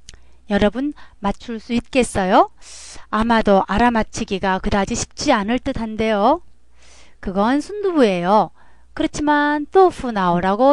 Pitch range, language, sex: 185-275 Hz, Korean, female